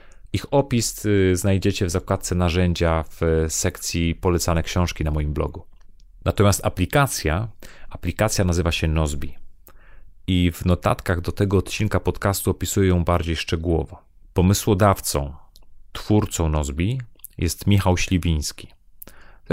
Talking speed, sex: 115 wpm, male